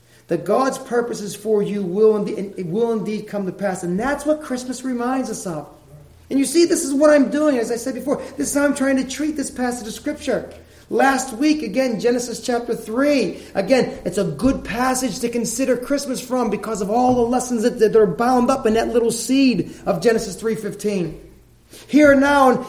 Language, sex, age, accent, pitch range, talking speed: English, male, 30-49, American, 180-255 Hz, 200 wpm